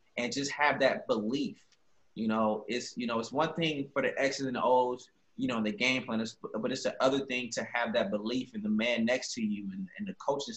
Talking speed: 250 wpm